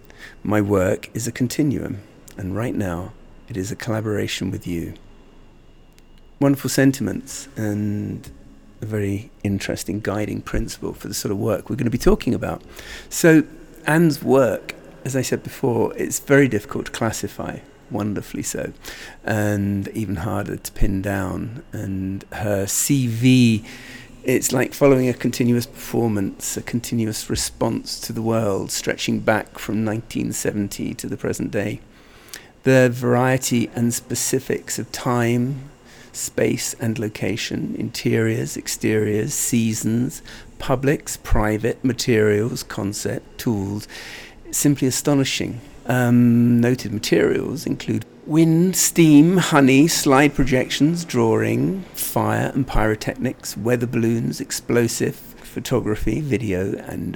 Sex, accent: male, British